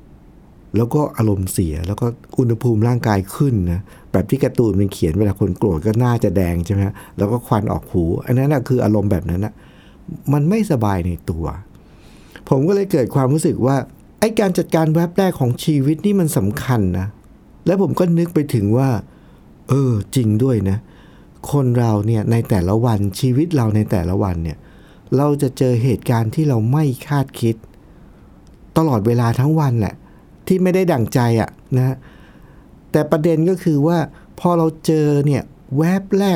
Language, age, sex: Thai, 60-79, male